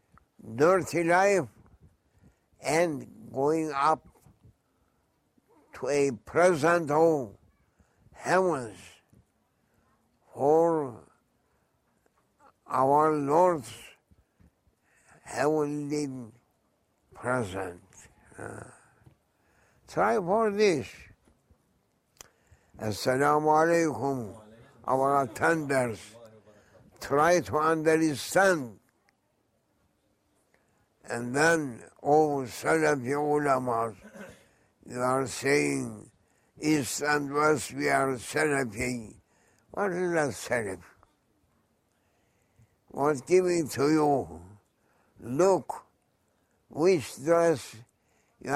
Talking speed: 65 wpm